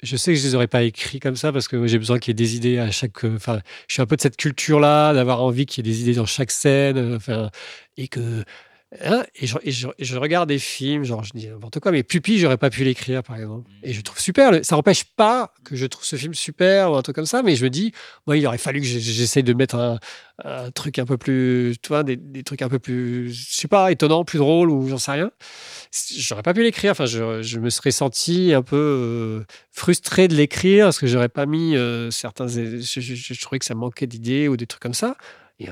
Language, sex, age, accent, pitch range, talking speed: French, male, 40-59, French, 120-155 Hz, 265 wpm